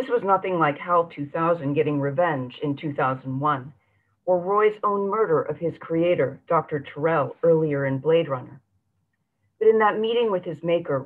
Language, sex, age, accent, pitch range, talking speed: English, female, 40-59, American, 145-185 Hz, 165 wpm